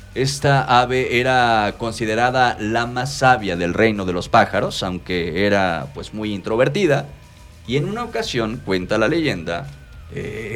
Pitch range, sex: 95-135 Hz, male